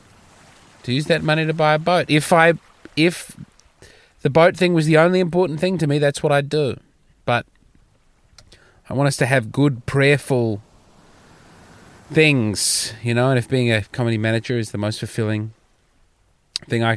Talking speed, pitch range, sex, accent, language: 170 wpm, 120-165 Hz, male, Australian, English